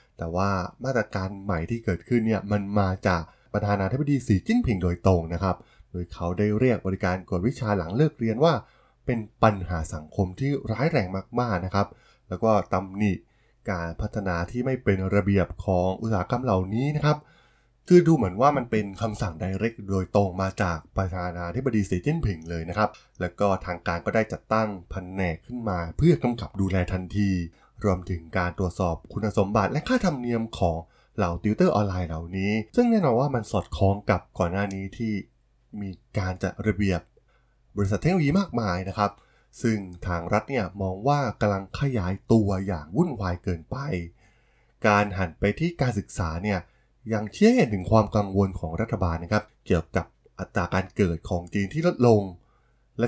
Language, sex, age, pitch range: Thai, male, 20-39, 90-115 Hz